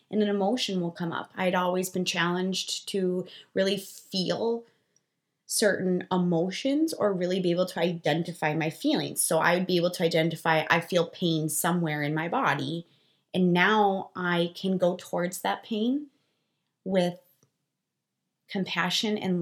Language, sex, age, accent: English, female, 20-39, American